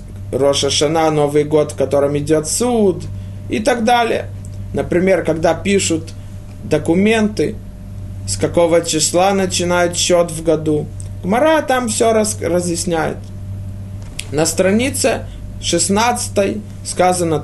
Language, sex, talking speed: Russian, male, 105 wpm